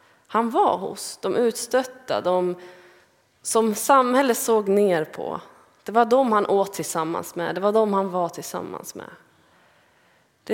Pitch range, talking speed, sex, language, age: 175-225 Hz, 150 wpm, female, Swedish, 20-39